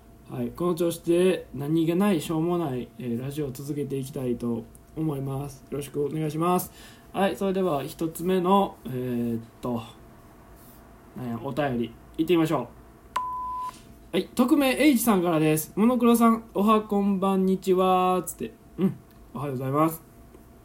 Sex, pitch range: male, 120-185 Hz